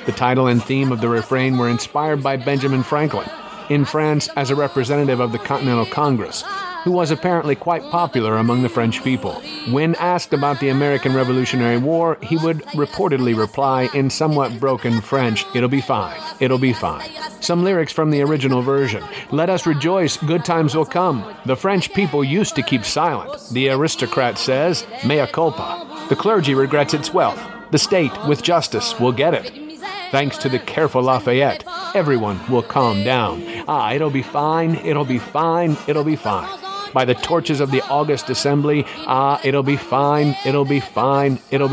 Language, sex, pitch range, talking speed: English, male, 130-160 Hz, 175 wpm